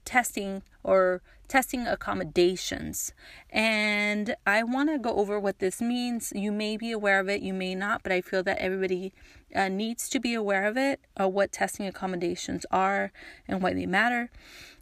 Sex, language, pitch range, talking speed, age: female, English, 190-230 Hz, 180 wpm, 30-49